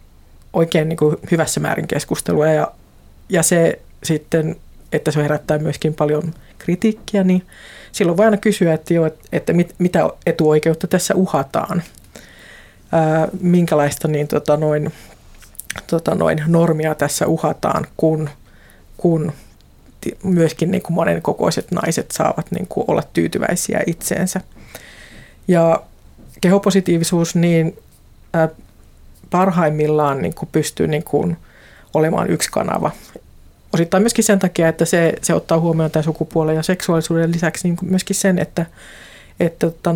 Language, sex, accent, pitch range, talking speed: Finnish, female, native, 155-175 Hz, 115 wpm